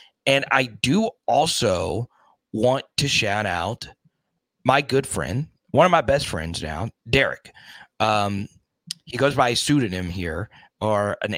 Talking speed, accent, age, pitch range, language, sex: 140 wpm, American, 30-49, 105-135 Hz, English, male